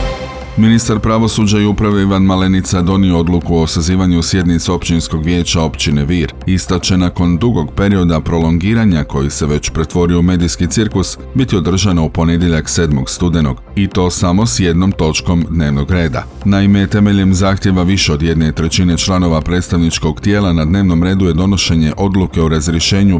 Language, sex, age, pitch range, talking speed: Croatian, male, 40-59, 85-100 Hz, 155 wpm